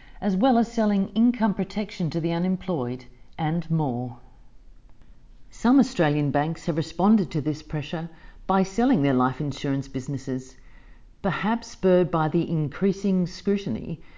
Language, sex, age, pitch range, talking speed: English, female, 40-59, 140-190 Hz, 130 wpm